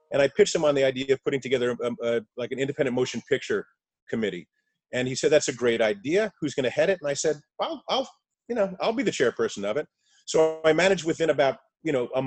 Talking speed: 245 wpm